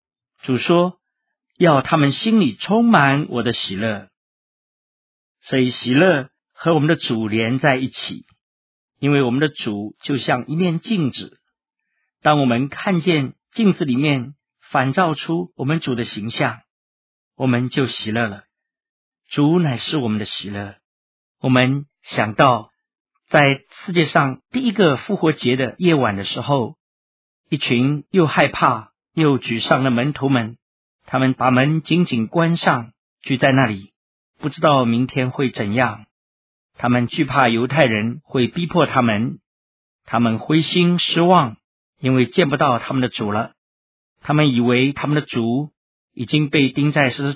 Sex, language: male, Chinese